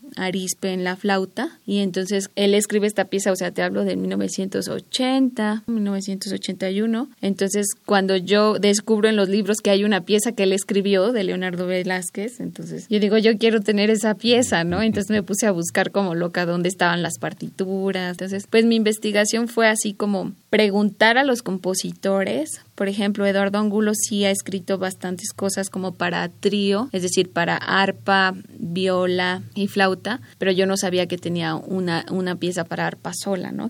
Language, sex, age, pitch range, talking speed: Spanish, female, 20-39, 185-220 Hz, 175 wpm